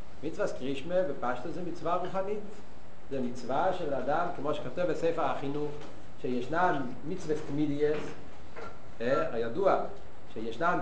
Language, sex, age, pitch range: Hebrew, male, 40-59, 135-185 Hz